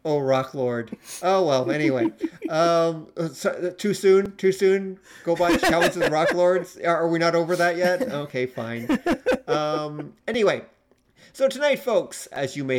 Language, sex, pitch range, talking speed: English, male, 135-190 Hz, 150 wpm